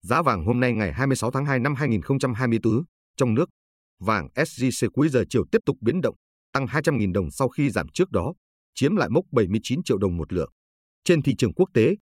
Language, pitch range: Vietnamese, 100-145 Hz